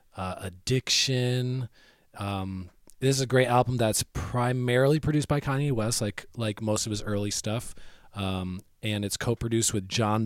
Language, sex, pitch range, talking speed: English, male, 100-115 Hz, 160 wpm